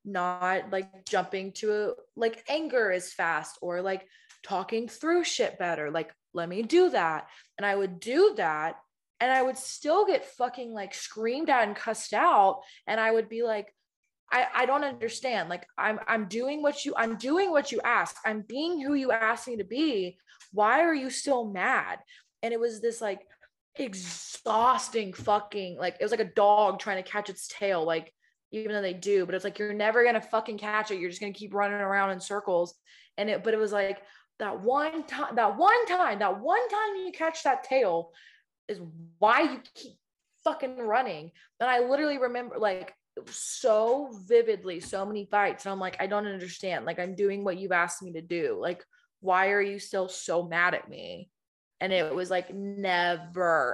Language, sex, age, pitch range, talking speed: English, female, 20-39, 190-250 Hz, 200 wpm